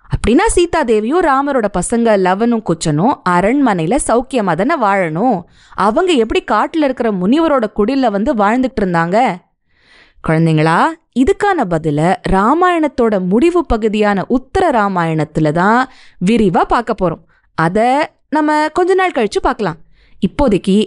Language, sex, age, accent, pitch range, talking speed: Tamil, female, 20-39, native, 180-275 Hz, 100 wpm